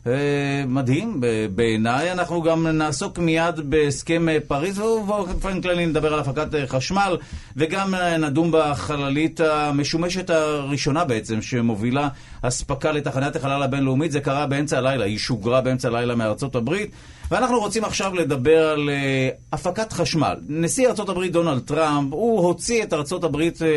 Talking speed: 130 wpm